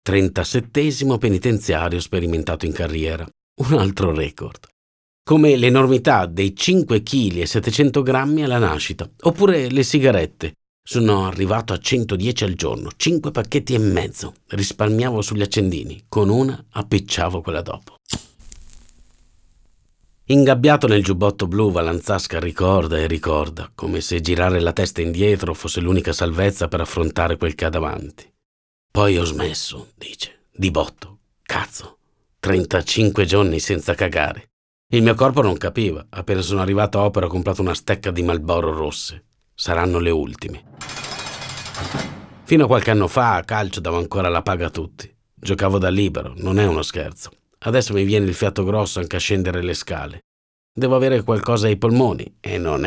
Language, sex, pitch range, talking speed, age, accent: Italian, male, 85-110 Hz, 150 wpm, 50-69, native